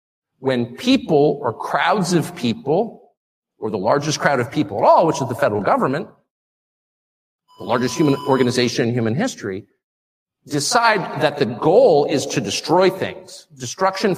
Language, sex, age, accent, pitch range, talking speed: English, male, 50-69, American, 115-185 Hz, 150 wpm